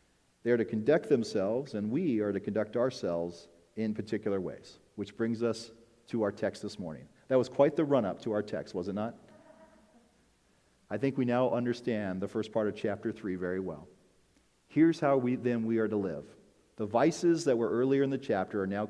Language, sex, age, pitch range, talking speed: English, male, 40-59, 105-130 Hz, 205 wpm